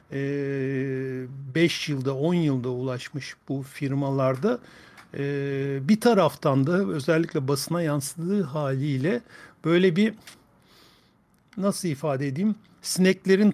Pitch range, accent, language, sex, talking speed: 135-165 Hz, native, Turkish, male, 90 wpm